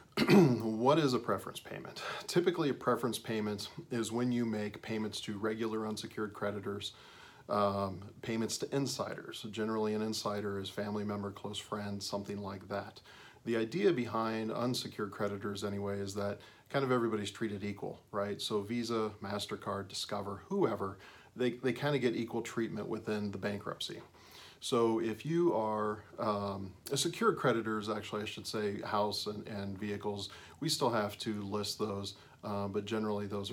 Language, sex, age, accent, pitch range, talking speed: English, male, 40-59, American, 100-115 Hz, 160 wpm